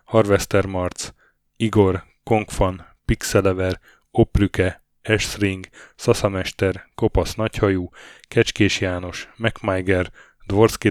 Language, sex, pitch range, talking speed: Hungarian, male, 95-105 Hz, 75 wpm